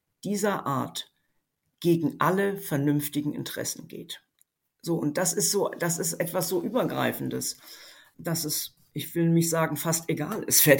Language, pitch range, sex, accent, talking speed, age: German, 145-175 Hz, female, German, 150 wpm, 50-69